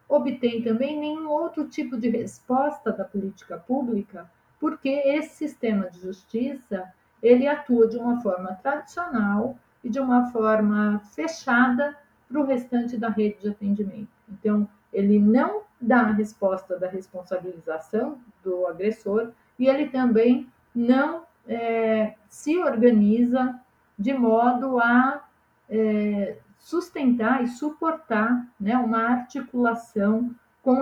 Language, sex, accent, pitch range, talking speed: Portuguese, female, Brazilian, 210-260 Hz, 120 wpm